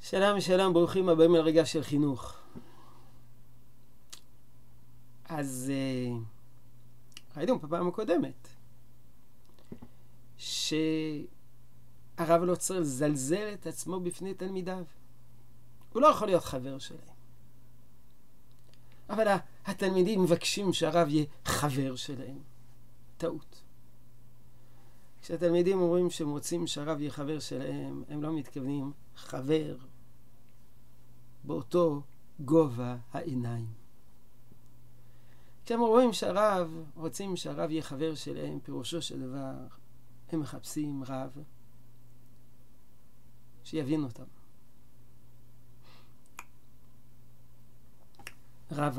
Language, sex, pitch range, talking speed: Hebrew, male, 120-165 Hz, 85 wpm